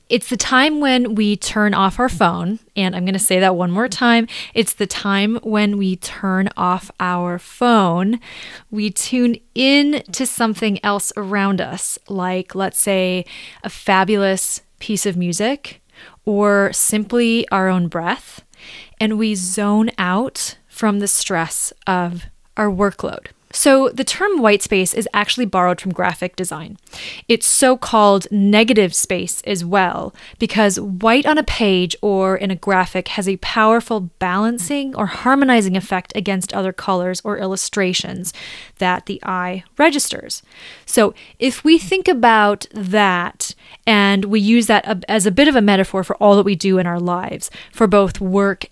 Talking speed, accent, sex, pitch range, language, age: 155 wpm, American, female, 190-230 Hz, English, 20-39